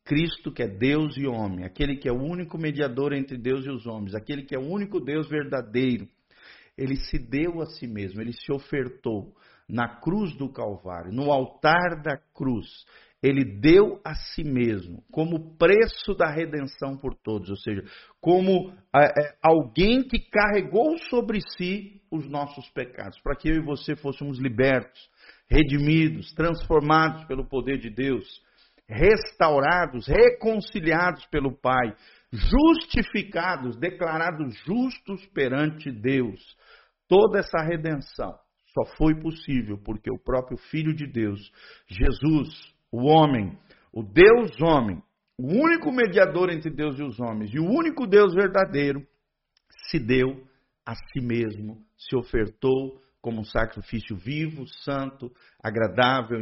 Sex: male